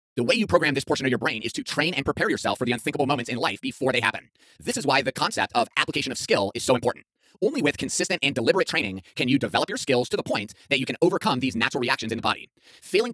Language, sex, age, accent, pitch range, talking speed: English, male, 30-49, American, 120-145 Hz, 280 wpm